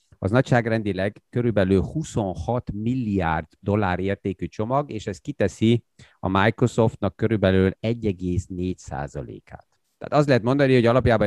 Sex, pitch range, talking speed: male, 95-120 Hz, 115 wpm